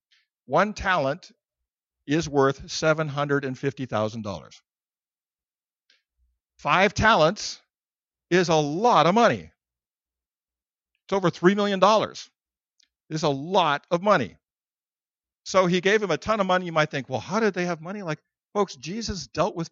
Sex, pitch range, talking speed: male, 120-180 Hz, 130 wpm